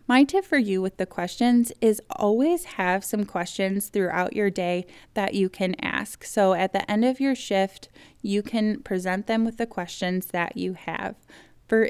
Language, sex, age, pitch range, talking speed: English, female, 20-39, 190-235 Hz, 185 wpm